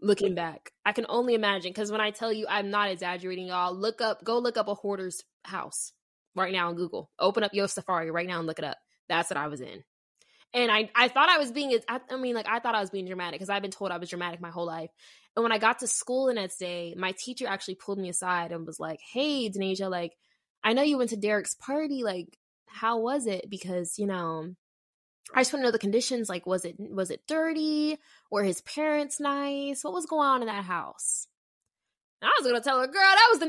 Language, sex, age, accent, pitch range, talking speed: English, female, 20-39, American, 190-300 Hz, 245 wpm